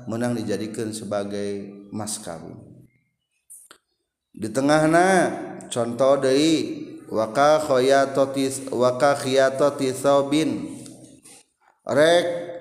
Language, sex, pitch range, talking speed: Indonesian, male, 135-175 Hz, 55 wpm